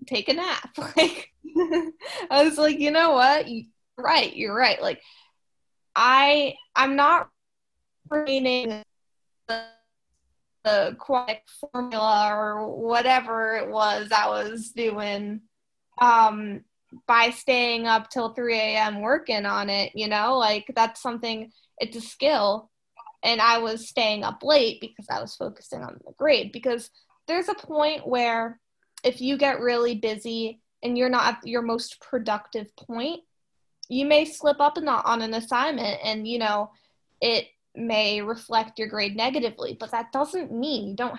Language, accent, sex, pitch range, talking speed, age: English, American, female, 220-265 Hz, 150 wpm, 10-29